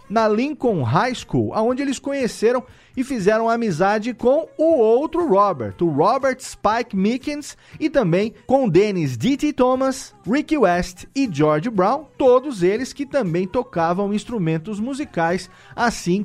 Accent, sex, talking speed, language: Brazilian, male, 135 wpm, Portuguese